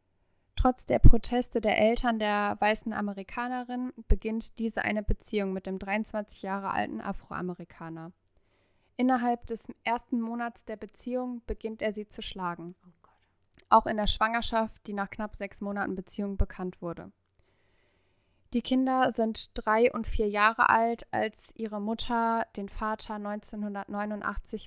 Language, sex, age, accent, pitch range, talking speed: German, female, 10-29, German, 190-230 Hz, 135 wpm